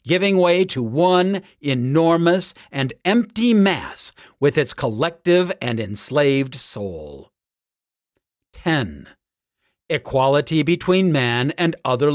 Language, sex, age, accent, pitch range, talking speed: English, male, 50-69, American, 135-180 Hz, 100 wpm